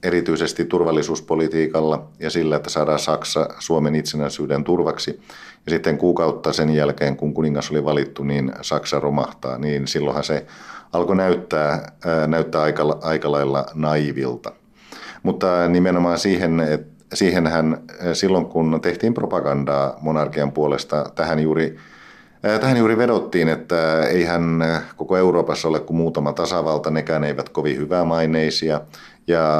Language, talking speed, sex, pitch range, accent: Finnish, 125 wpm, male, 75-85 Hz, native